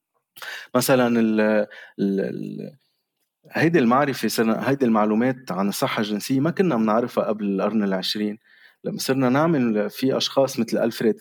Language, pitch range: Arabic, 105-130 Hz